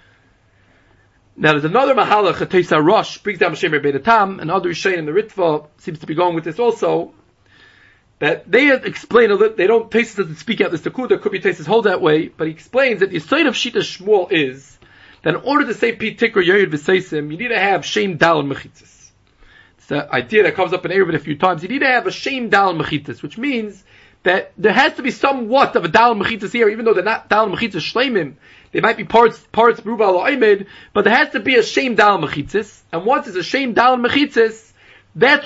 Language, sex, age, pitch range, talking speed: English, male, 30-49, 170-250 Hz, 220 wpm